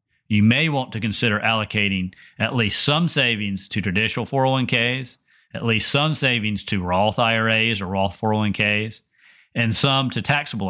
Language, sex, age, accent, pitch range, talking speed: English, male, 40-59, American, 100-125 Hz, 150 wpm